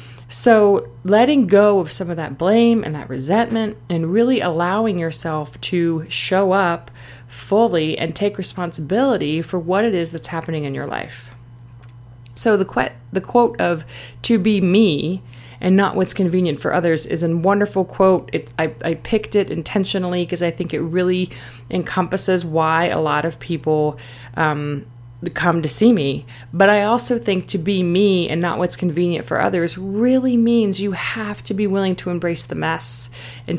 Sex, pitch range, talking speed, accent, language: female, 155-195 Hz, 175 wpm, American, English